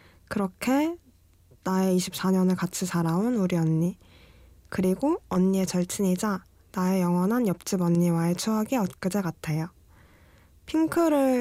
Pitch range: 175-220 Hz